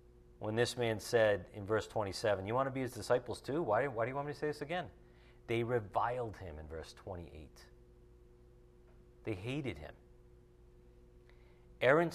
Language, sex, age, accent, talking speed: English, male, 40-59, American, 170 wpm